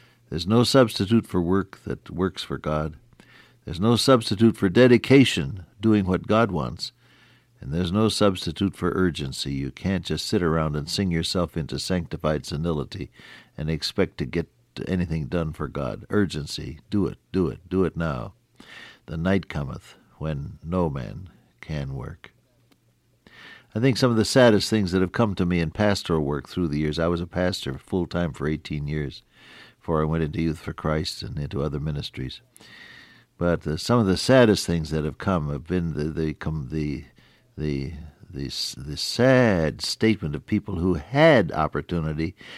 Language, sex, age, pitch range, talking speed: English, male, 60-79, 75-95 Hz, 170 wpm